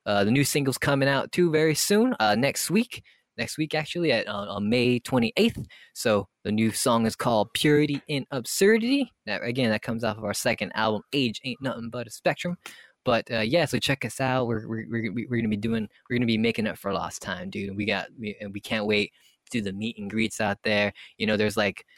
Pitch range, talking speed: 105-145 Hz, 230 wpm